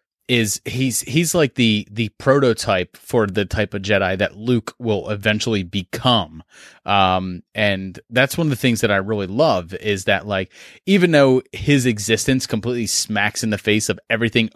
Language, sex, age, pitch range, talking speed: English, male, 30-49, 100-125 Hz, 175 wpm